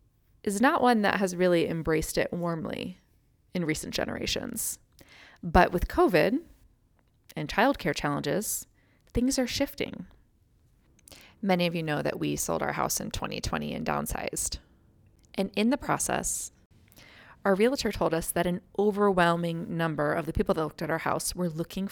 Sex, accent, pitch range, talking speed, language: female, American, 160-210 Hz, 155 wpm, English